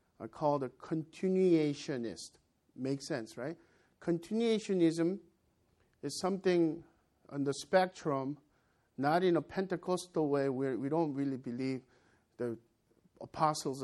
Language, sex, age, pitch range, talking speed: English, male, 50-69, 135-185 Hz, 110 wpm